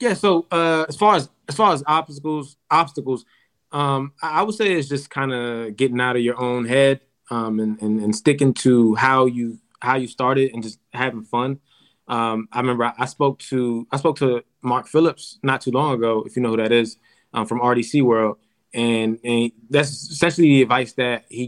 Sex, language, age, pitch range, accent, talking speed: male, English, 20-39, 115-140 Hz, American, 215 wpm